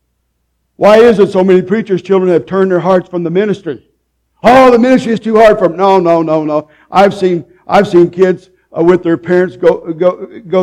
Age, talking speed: 60-79, 210 wpm